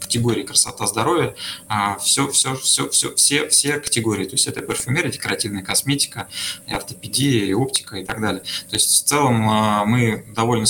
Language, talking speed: Russian, 165 wpm